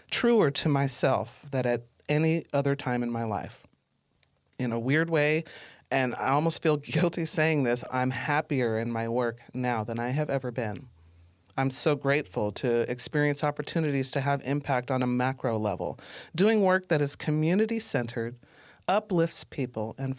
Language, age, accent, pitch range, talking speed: English, 40-59, American, 125-165 Hz, 160 wpm